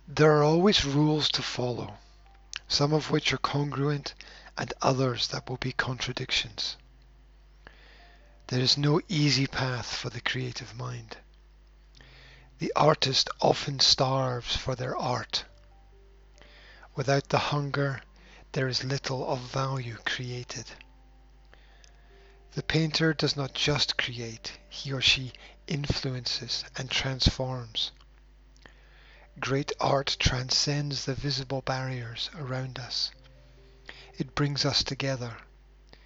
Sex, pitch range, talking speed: male, 125-145 Hz, 110 wpm